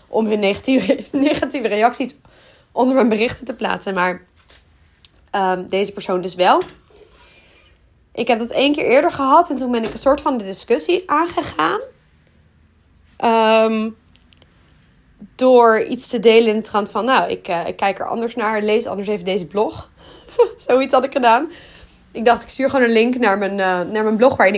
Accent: Dutch